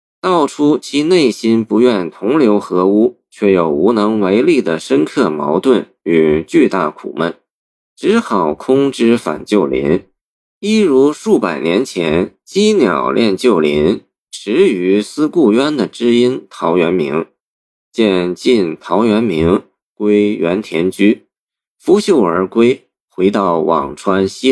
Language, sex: Chinese, male